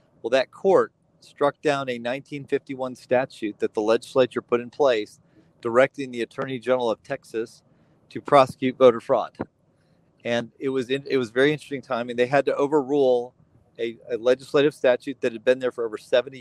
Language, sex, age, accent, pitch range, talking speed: English, male, 40-59, American, 125-155 Hz, 185 wpm